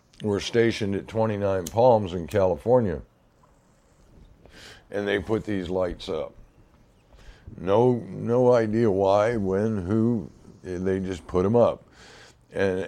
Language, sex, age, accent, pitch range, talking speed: English, male, 60-79, American, 90-110 Hz, 115 wpm